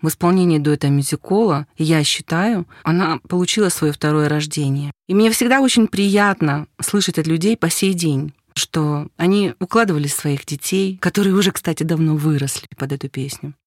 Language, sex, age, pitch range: Russian, female, 30-49, 150-205 Hz